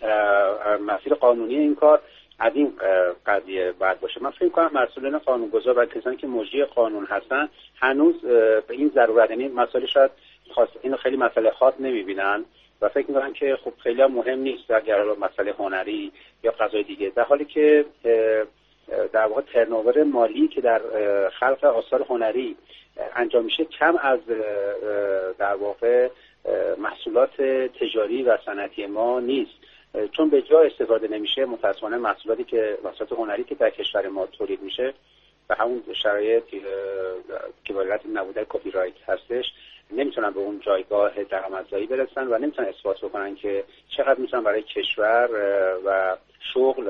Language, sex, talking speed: Persian, male, 140 wpm